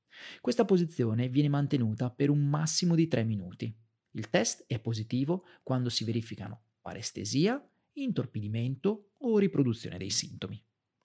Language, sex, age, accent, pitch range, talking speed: Italian, male, 40-59, native, 110-165 Hz, 125 wpm